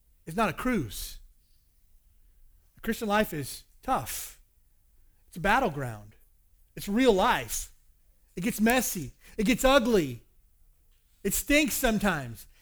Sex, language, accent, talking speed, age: male, English, American, 110 wpm, 30-49